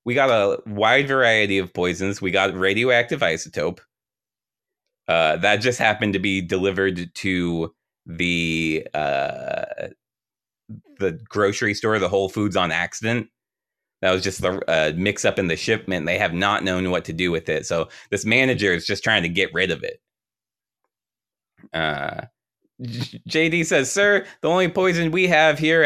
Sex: male